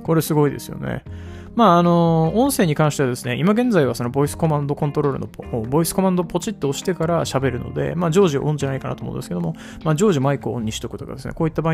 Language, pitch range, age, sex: Japanese, 115-155 Hz, 20-39, male